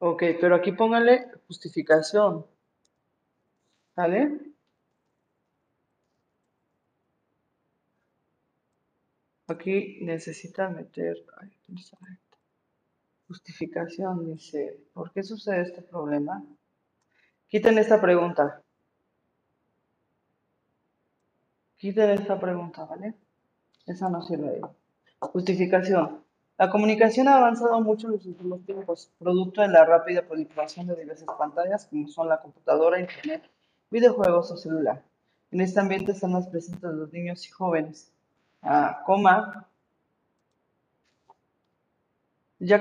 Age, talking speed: 30-49, 95 wpm